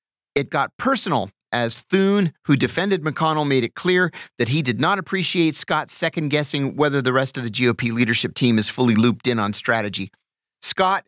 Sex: male